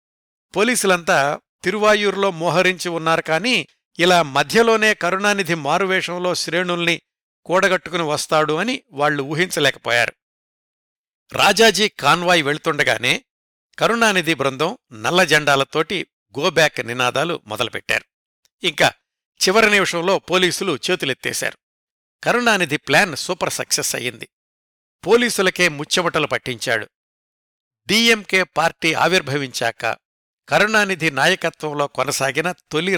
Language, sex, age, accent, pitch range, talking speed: Telugu, male, 60-79, native, 140-190 Hz, 80 wpm